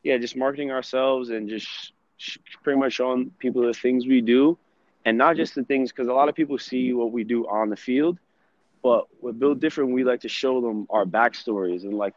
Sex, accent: male, American